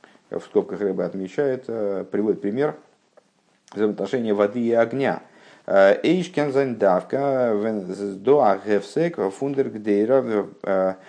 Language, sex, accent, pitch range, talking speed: Russian, male, native, 105-135 Hz, 60 wpm